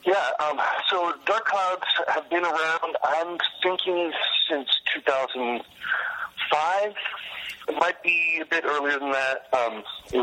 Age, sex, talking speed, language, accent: 40-59, male, 130 wpm, English, American